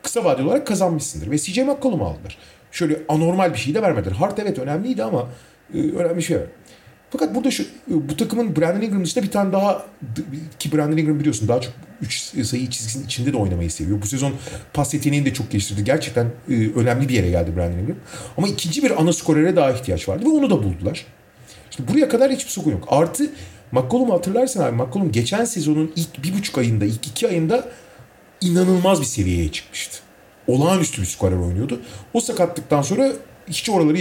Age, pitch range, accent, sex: 40-59, 115-175 Hz, native, male